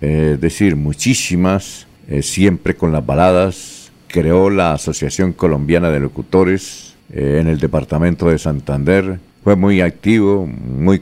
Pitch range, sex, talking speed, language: 80-95 Hz, male, 130 wpm, Spanish